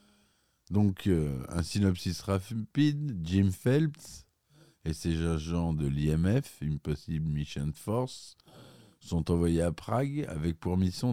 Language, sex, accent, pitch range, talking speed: French, male, French, 80-105 Hz, 115 wpm